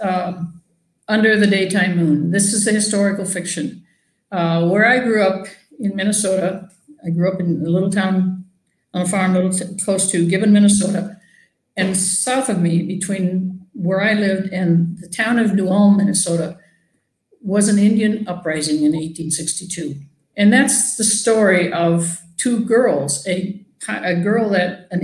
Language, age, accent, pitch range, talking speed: English, 60-79, American, 175-205 Hz, 155 wpm